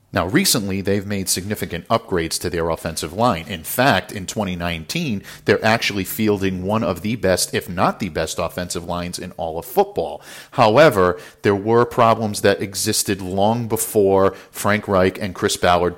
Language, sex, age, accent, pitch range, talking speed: English, male, 50-69, American, 90-105 Hz, 165 wpm